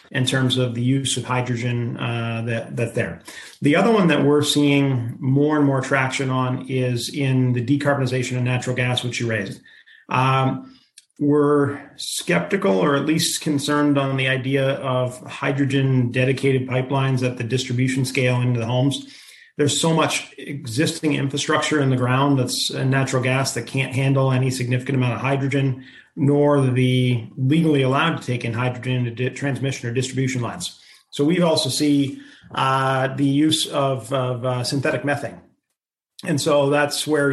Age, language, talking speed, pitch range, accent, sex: 40-59, English, 165 wpm, 130-145 Hz, American, male